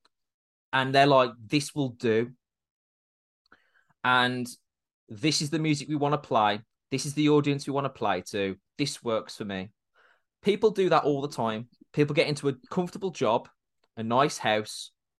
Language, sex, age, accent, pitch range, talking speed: English, male, 20-39, British, 115-145 Hz, 170 wpm